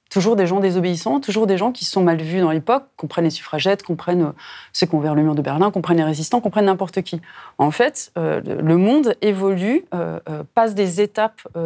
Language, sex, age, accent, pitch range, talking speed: French, female, 30-49, French, 175-235 Hz, 200 wpm